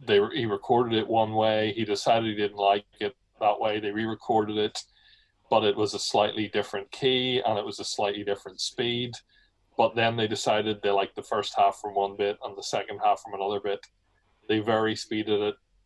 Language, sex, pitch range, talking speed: English, male, 100-120 Hz, 205 wpm